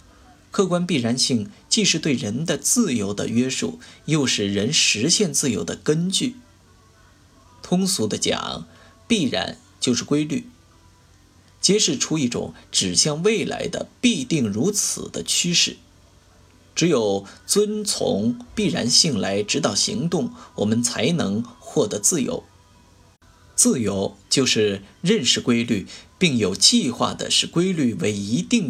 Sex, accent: male, native